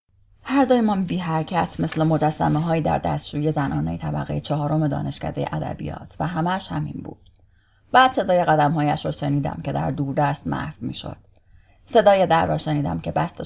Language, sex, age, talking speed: English, female, 30-49, 155 wpm